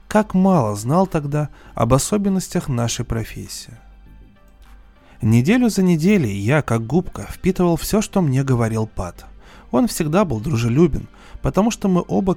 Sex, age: male, 20-39